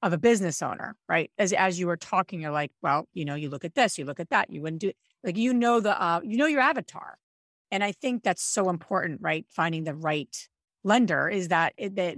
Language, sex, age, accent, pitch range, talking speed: English, female, 40-59, American, 165-220 Hz, 250 wpm